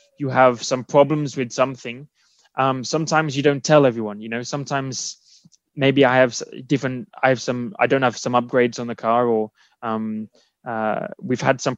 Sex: male